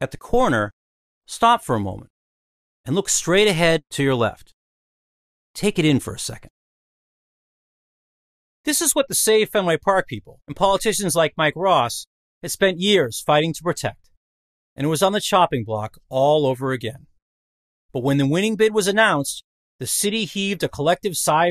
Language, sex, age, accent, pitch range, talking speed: English, male, 40-59, American, 120-200 Hz, 175 wpm